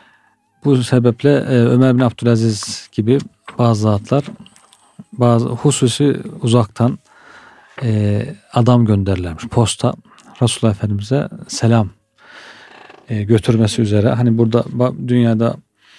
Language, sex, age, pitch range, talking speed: Turkish, male, 40-59, 110-130 Hz, 85 wpm